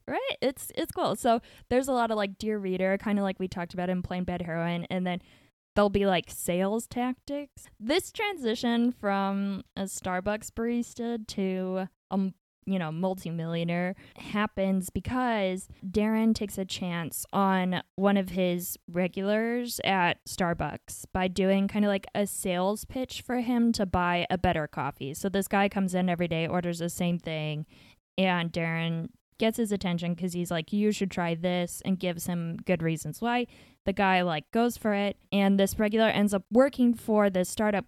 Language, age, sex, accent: English, 10-29, female, American